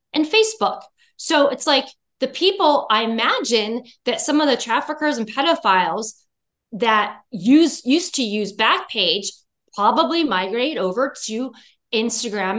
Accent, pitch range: American, 220-300 Hz